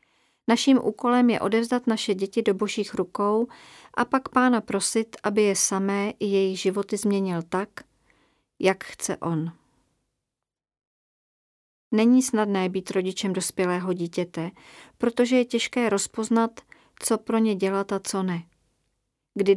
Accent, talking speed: native, 130 wpm